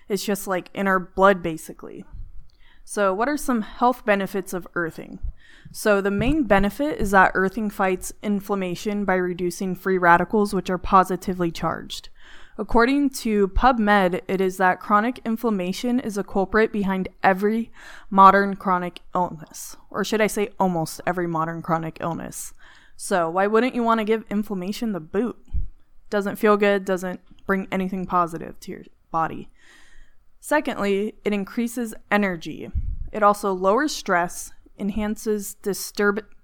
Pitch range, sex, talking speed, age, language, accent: 185-220 Hz, female, 140 wpm, 20-39, English, American